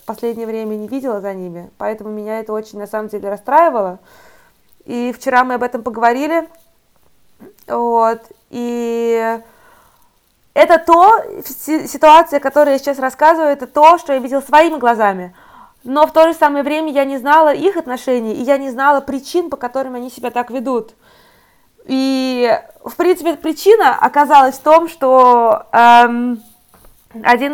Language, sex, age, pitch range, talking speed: Russian, female, 20-39, 235-295 Hz, 145 wpm